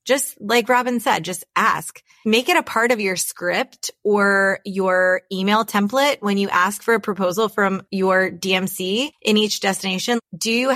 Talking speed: 175 wpm